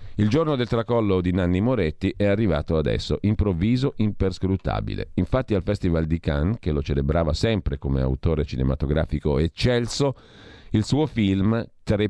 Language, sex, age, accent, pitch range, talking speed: Italian, male, 50-69, native, 80-110 Hz, 145 wpm